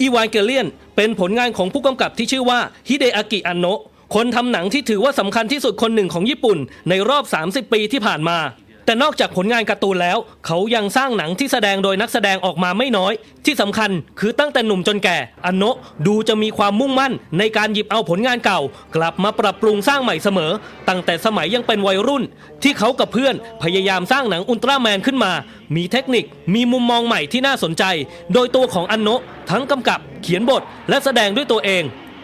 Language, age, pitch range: English, 20-39, 190-245 Hz